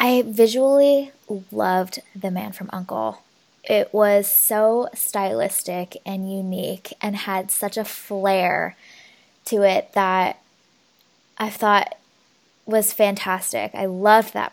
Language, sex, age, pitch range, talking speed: English, female, 10-29, 195-235 Hz, 115 wpm